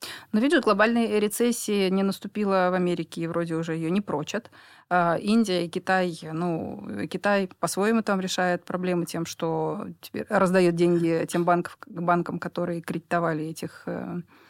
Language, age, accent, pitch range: Russian, 20-39, native, 170-200 Hz